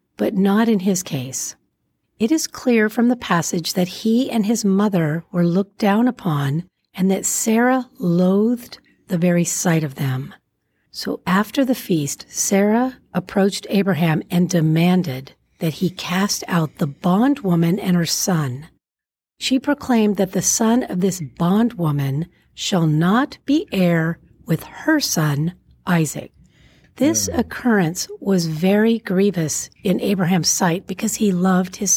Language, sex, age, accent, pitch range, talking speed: English, female, 50-69, American, 175-225 Hz, 140 wpm